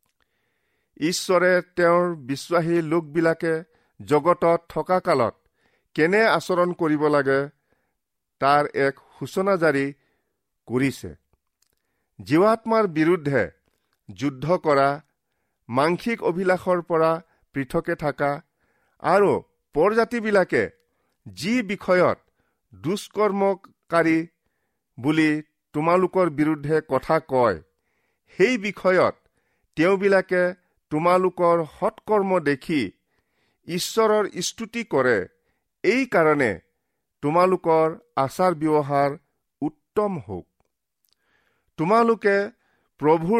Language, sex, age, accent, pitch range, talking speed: English, male, 50-69, Indian, 145-190 Hz, 70 wpm